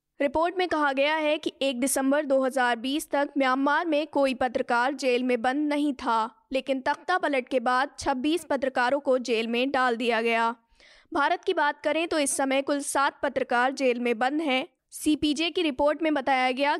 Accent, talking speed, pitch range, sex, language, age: native, 180 wpm, 245-295 Hz, female, Hindi, 20-39